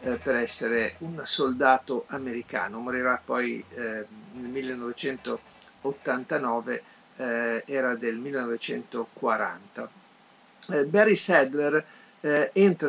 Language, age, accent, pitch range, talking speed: Italian, 50-69, native, 130-160 Hz, 90 wpm